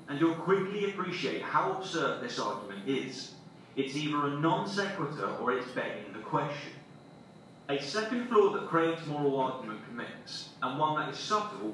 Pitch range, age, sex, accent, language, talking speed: 140-195 Hz, 30-49, male, British, English, 165 wpm